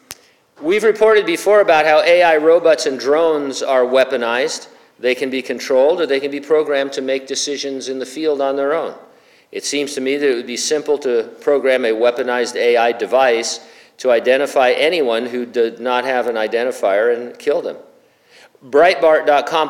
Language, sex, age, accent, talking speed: English, male, 50-69, American, 175 wpm